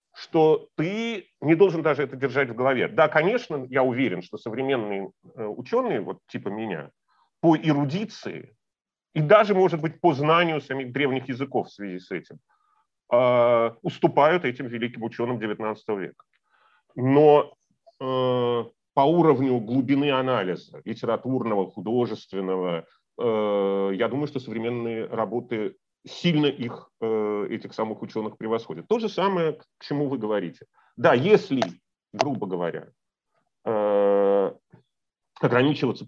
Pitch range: 110-155 Hz